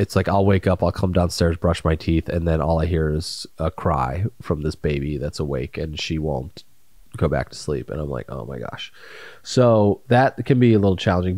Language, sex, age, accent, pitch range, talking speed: English, male, 30-49, American, 95-115 Hz, 230 wpm